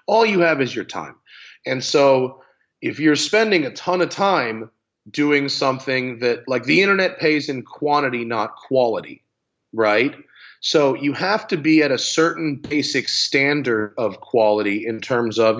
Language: English